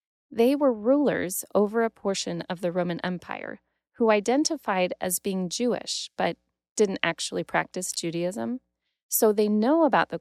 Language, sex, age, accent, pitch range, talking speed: English, female, 30-49, American, 165-220 Hz, 145 wpm